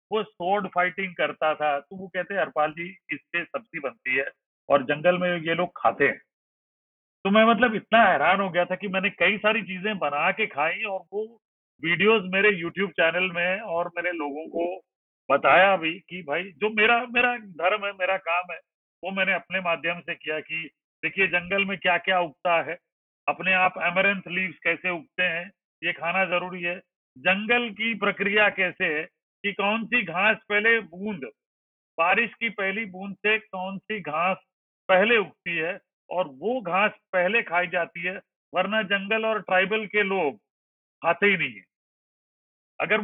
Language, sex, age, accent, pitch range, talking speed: Hindi, male, 40-59, native, 175-215 Hz, 175 wpm